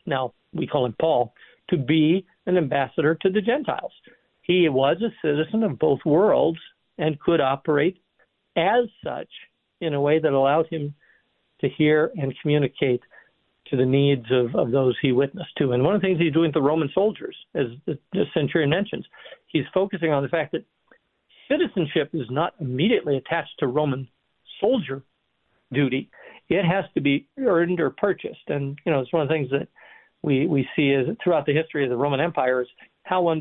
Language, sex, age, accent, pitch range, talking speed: English, male, 60-79, American, 135-165 Hz, 185 wpm